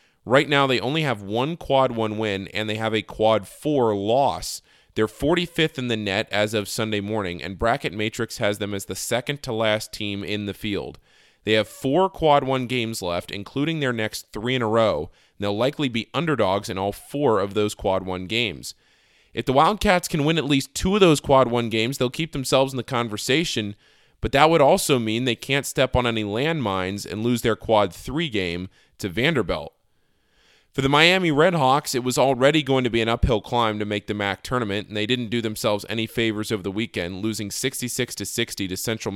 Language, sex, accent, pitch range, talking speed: English, male, American, 105-130 Hz, 205 wpm